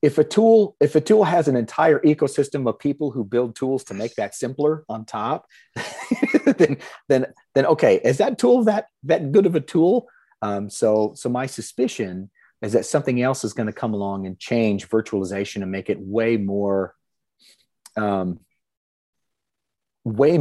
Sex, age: male, 30-49